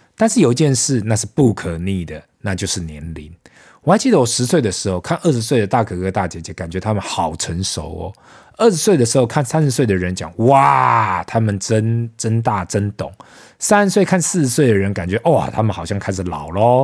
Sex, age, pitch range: male, 20-39, 95-135 Hz